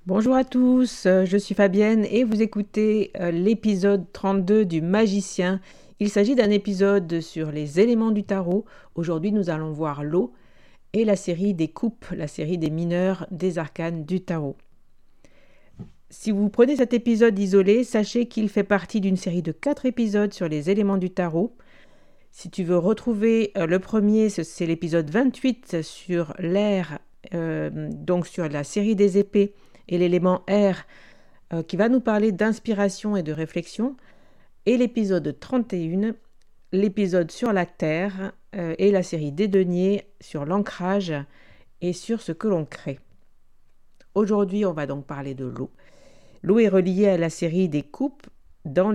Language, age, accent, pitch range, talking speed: French, 50-69, French, 170-210 Hz, 160 wpm